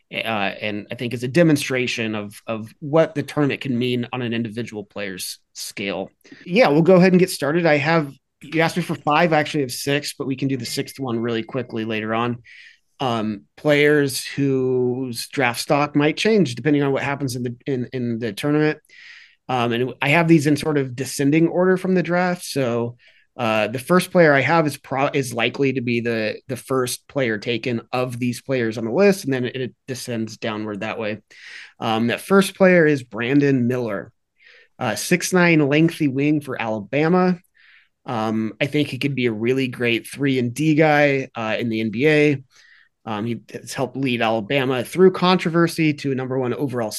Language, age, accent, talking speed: English, 30-49, American, 195 wpm